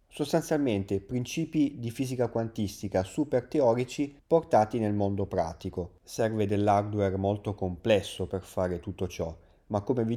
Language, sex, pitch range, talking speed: Italian, male, 100-125 Hz, 130 wpm